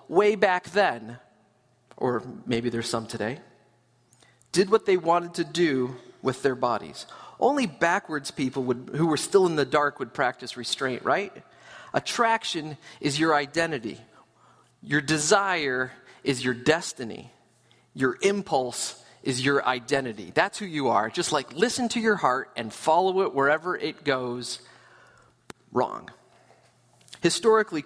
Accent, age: American, 40-59